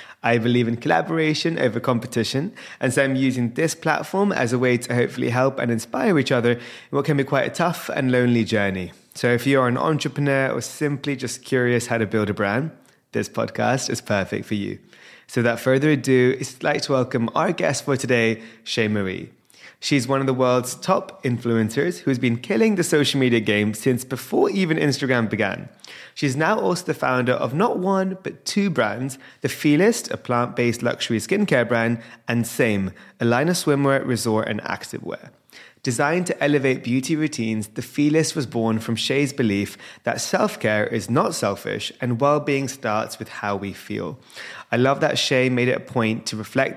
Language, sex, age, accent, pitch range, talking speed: English, male, 20-39, British, 115-145 Hz, 190 wpm